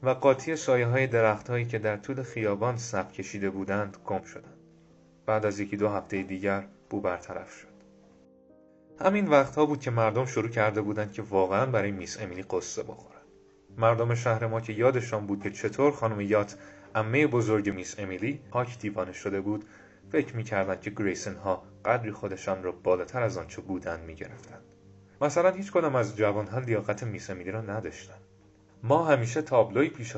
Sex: male